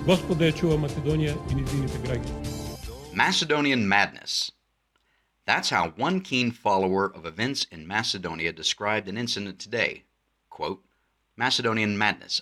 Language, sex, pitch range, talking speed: English, male, 95-135 Hz, 85 wpm